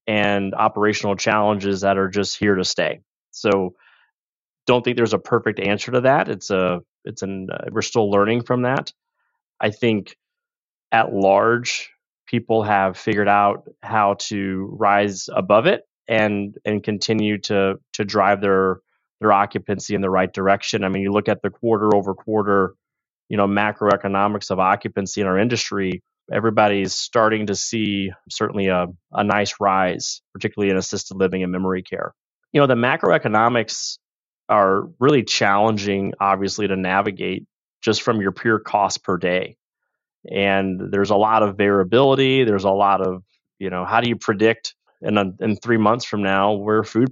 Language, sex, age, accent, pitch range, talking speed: English, male, 20-39, American, 95-110 Hz, 165 wpm